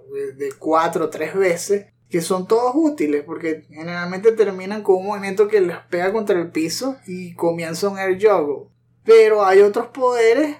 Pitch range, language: 170-225 Hz, Spanish